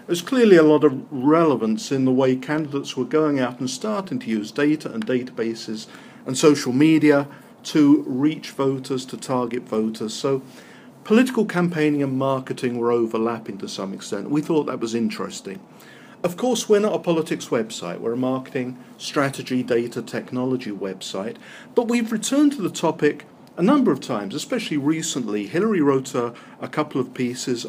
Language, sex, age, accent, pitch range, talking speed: English, male, 50-69, British, 125-155 Hz, 165 wpm